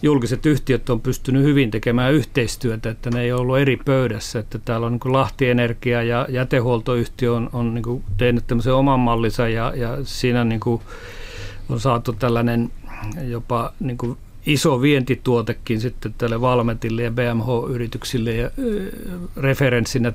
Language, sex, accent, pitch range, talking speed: Finnish, male, native, 115-130 Hz, 130 wpm